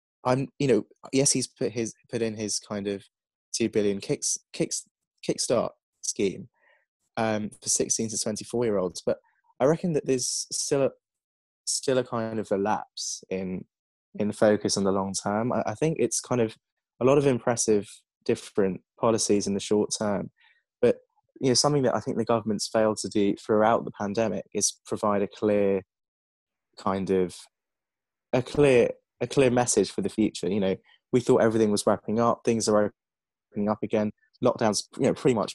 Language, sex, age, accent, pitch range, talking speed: English, male, 20-39, British, 100-120 Hz, 185 wpm